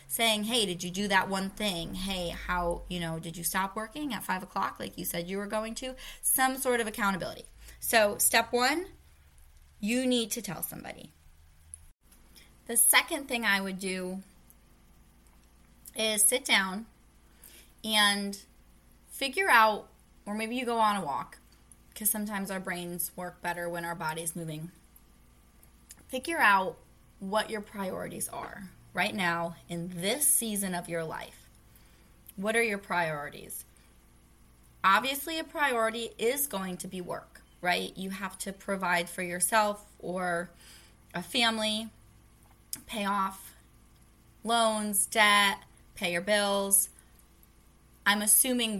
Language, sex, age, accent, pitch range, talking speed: English, female, 20-39, American, 170-220 Hz, 140 wpm